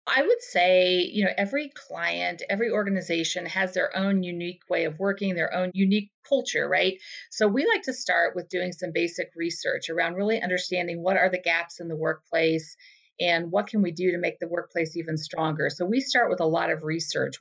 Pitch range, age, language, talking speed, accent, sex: 170-205 Hz, 40-59, English, 205 wpm, American, female